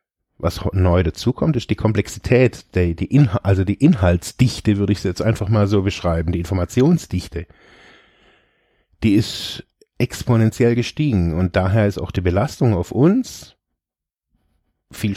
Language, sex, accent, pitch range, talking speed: German, male, German, 95-125 Hz, 140 wpm